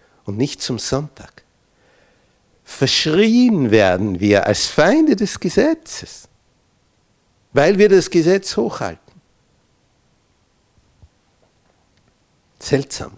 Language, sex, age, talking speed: German, male, 60-79, 75 wpm